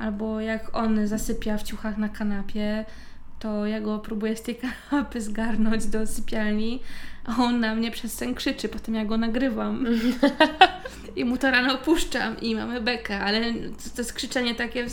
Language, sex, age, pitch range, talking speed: Polish, female, 20-39, 215-245 Hz, 170 wpm